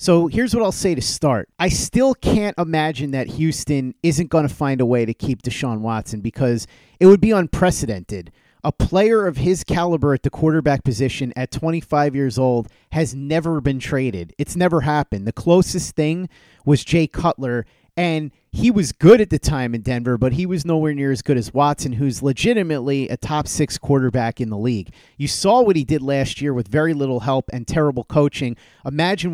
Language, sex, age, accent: English, male, 30-49, American